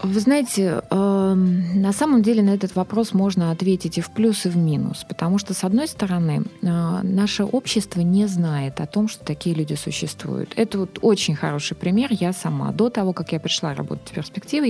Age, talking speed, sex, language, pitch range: 20-39, 195 wpm, female, Russian, 160-205 Hz